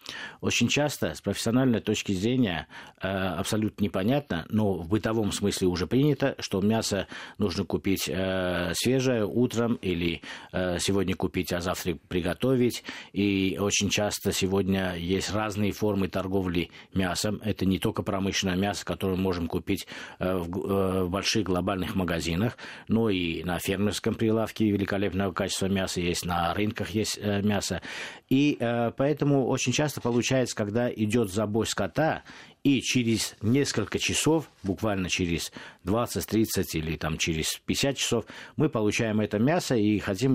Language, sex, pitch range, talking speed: Russian, male, 95-115 Hz, 130 wpm